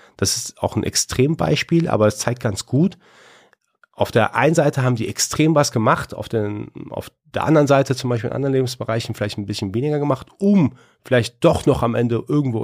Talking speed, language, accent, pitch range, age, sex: 200 wpm, German, German, 105-130 Hz, 40-59, male